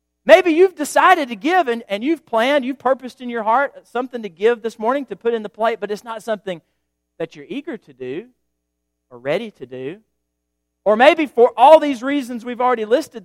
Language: English